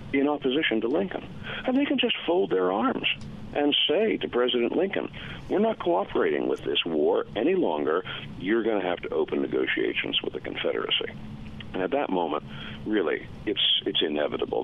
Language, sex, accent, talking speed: English, male, American, 170 wpm